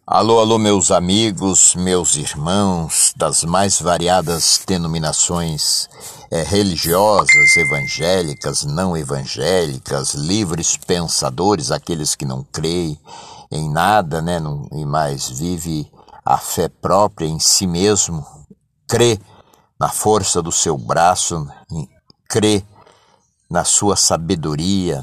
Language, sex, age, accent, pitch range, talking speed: Portuguese, male, 60-79, Brazilian, 85-105 Hz, 100 wpm